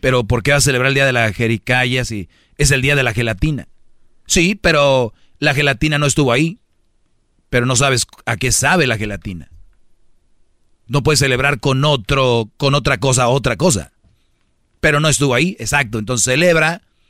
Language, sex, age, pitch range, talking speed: Spanish, male, 40-59, 115-145 Hz, 170 wpm